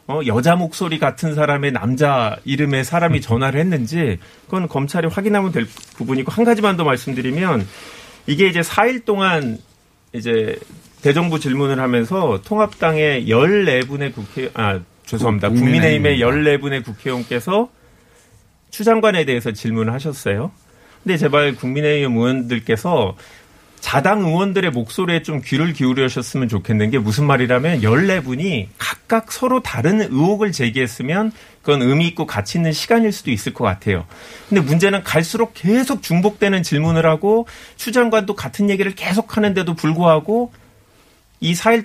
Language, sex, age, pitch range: Korean, male, 40-59, 125-190 Hz